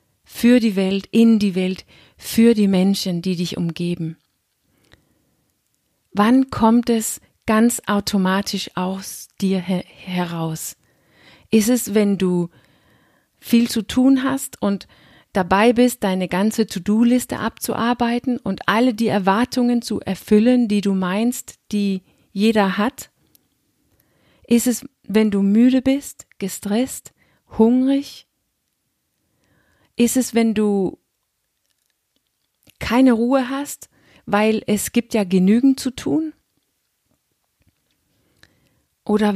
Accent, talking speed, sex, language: German, 105 wpm, female, German